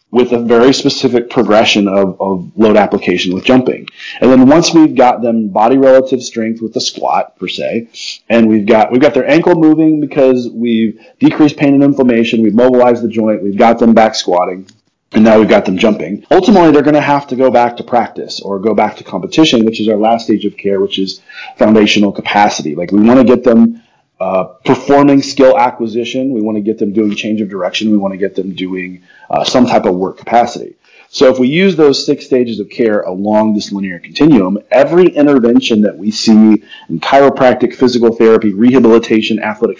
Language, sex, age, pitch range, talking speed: English, male, 30-49, 105-135 Hz, 200 wpm